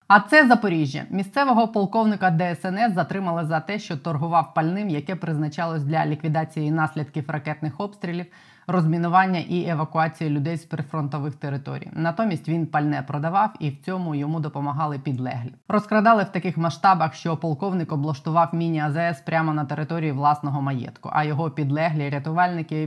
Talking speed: 140 wpm